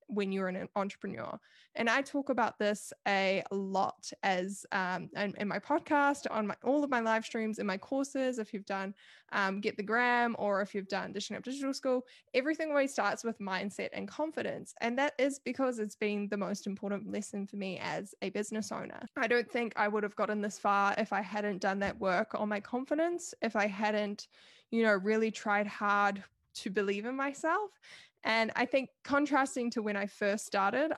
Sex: female